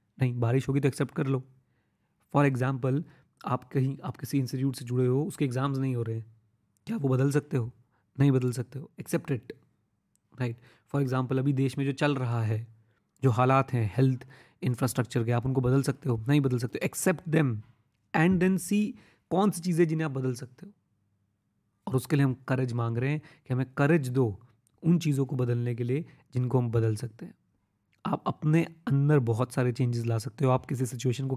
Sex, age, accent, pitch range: male, 30-49, native, 120-145 Hz